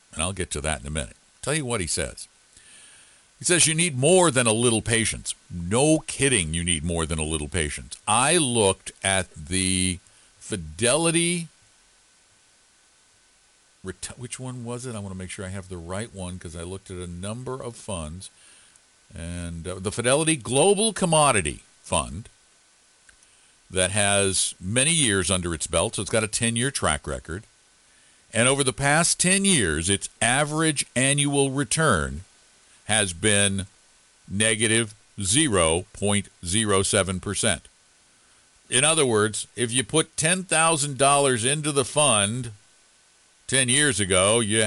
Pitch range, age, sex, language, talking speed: 90-130 Hz, 50-69, male, English, 140 wpm